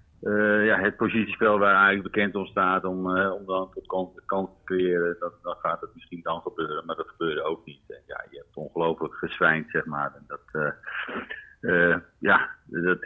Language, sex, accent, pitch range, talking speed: Dutch, male, Dutch, 90-115 Hz, 200 wpm